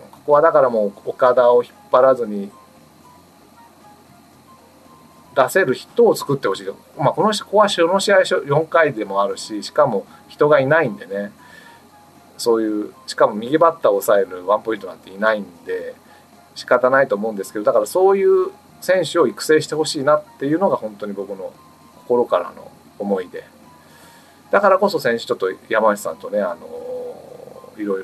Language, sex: Japanese, male